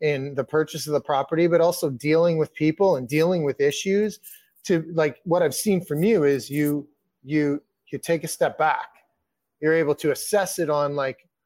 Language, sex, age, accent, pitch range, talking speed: English, male, 30-49, American, 140-170 Hz, 195 wpm